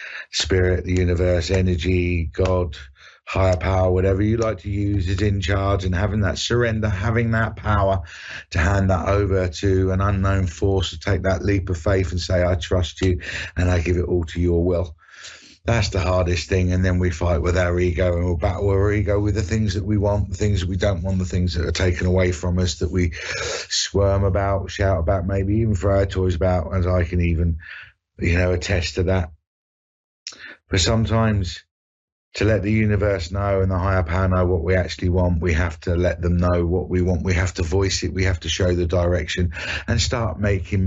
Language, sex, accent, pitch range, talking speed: English, male, British, 90-100 Hz, 215 wpm